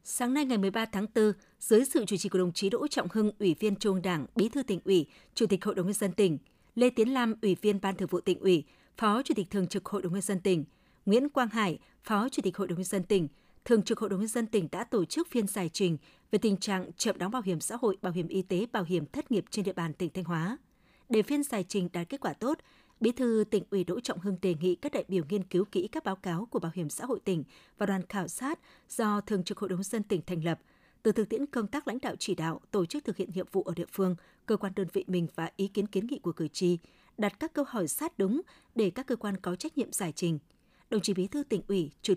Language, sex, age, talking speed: Vietnamese, female, 20-39, 285 wpm